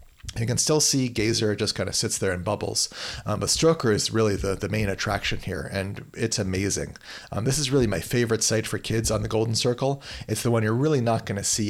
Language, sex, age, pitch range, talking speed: English, male, 40-59, 95-115 Hz, 240 wpm